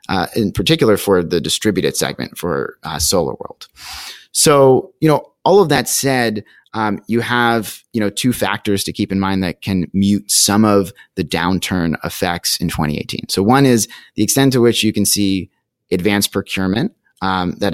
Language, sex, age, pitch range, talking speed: English, male, 30-49, 95-110 Hz, 175 wpm